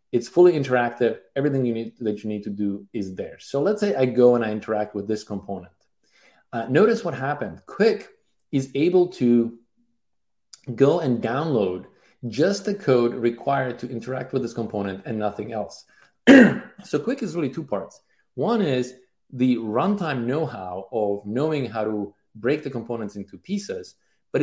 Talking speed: 165 wpm